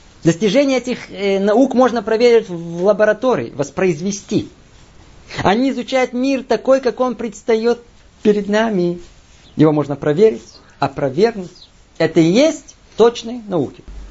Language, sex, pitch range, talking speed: Russian, male, 165-240 Hz, 115 wpm